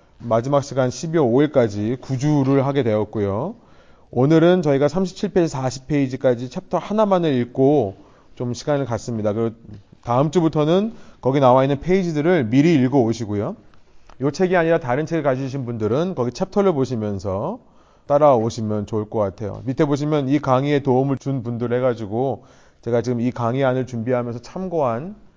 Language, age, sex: Korean, 30-49, male